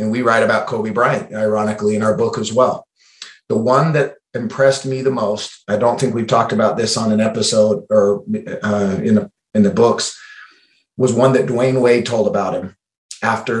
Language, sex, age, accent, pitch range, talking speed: English, male, 30-49, American, 110-130 Hz, 200 wpm